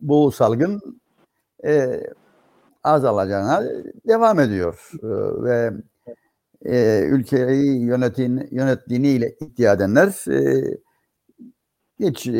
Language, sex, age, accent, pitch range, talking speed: Turkish, male, 60-79, native, 125-195 Hz, 75 wpm